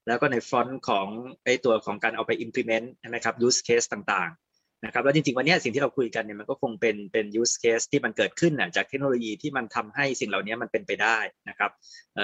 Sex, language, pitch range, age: male, Thai, 115-140 Hz, 20-39